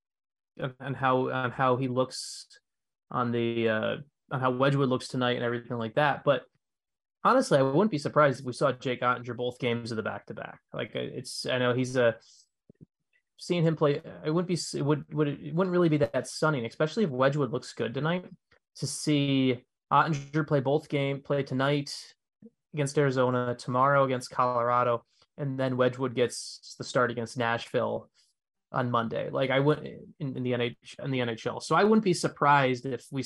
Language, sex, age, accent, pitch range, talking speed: English, male, 20-39, American, 125-150 Hz, 185 wpm